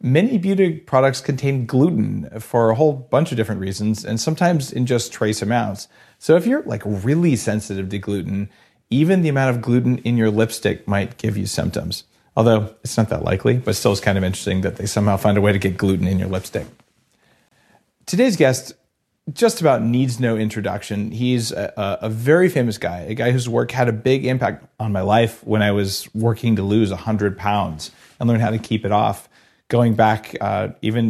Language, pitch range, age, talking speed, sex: English, 105-130 Hz, 40-59, 200 wpm, male